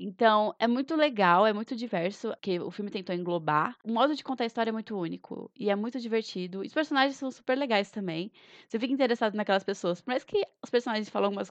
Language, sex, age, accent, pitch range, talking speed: Portuguese, female, 20-39, Brazilian, 190-230 Hz, 230 wpm